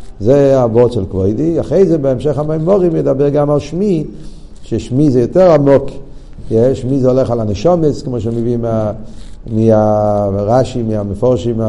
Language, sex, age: Hebrew, male, 50-69